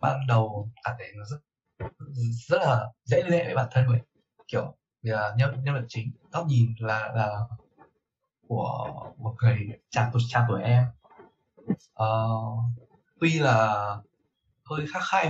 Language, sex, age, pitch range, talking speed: Vietnamese, male, 20-39, 110-140 Hz, 130 wpm